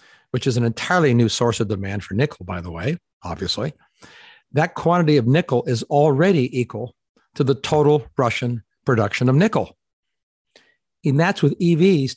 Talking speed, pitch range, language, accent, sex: 160 wpm, 110-140 Hz, English, American, male